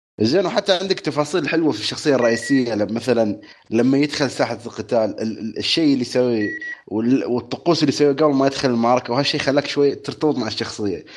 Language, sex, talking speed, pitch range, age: Arabic, male, 160 wpm, 110-150 Hz, 30-49